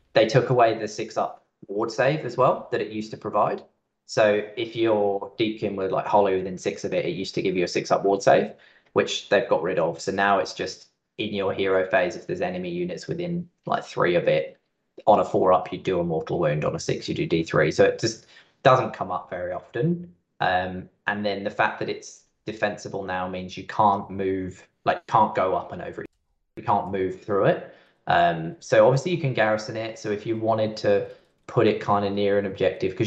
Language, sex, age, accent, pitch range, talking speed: English, male, 20-39, British, 95-130 Hz, 225 wpm